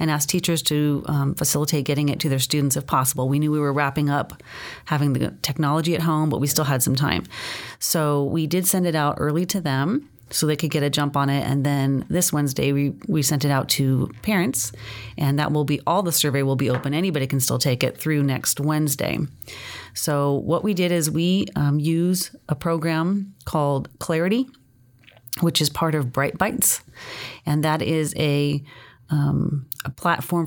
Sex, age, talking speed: female, 30-49, 200 wpm